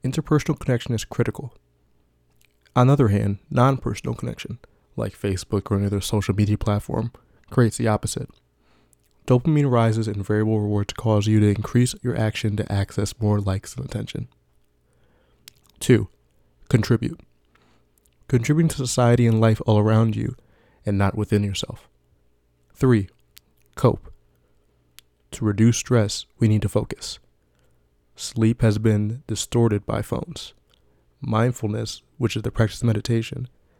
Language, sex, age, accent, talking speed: English, male, 20-39, American, 130 wpm